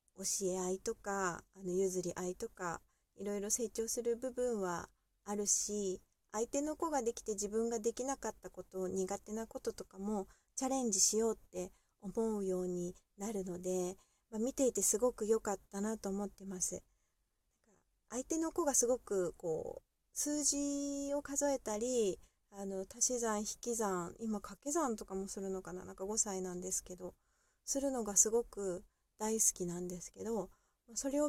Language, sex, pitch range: Japanese, female, 185-235 Hz